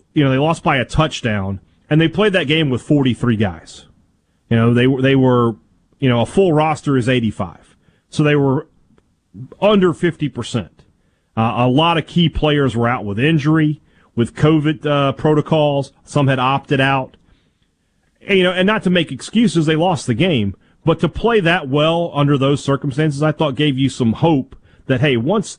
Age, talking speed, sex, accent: 40-59, 190 wpm, male, American